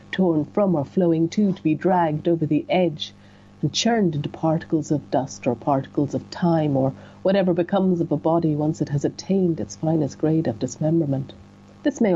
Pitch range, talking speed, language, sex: 140-190 Hz, 190 wpm, English, female